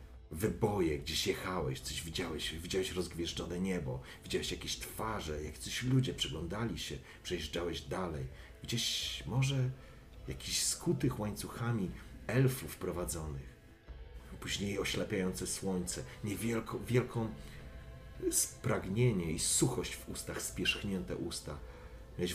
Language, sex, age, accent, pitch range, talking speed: Polish, male, 40-59, native, 75-110 Hz, 100 wpm